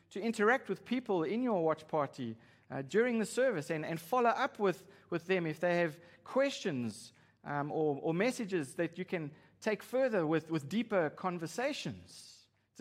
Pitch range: 145-200 Hz